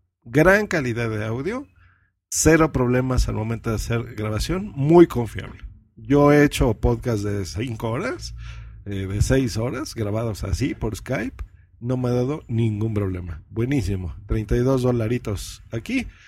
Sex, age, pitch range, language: male, 50-69, 105-140 Hz, Spanish